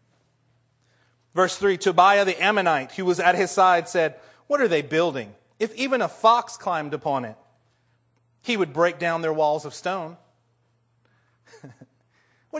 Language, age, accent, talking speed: English, 30-49, American, 150 wpm